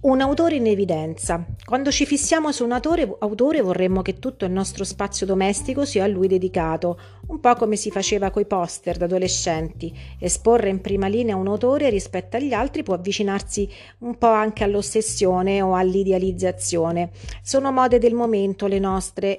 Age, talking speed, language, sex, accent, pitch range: 40-59, 165 wpm, Italian, female, native, 170-220 Hz